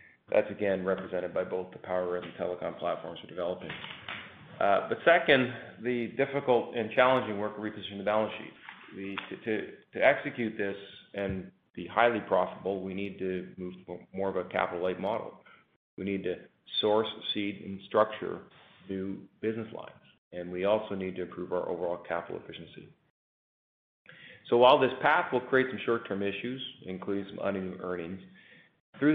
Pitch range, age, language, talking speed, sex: 95-115 Hz, 40-59, English, 165 wpm, male